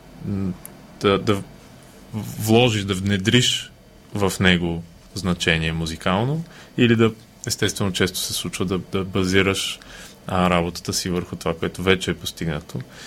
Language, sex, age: Bulgarian, male, 20-39